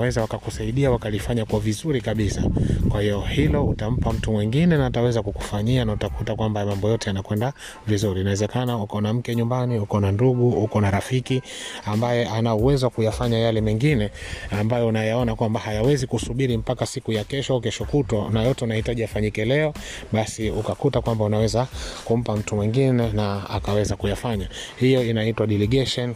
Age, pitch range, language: 30-49, 105-125 Hz, Swahili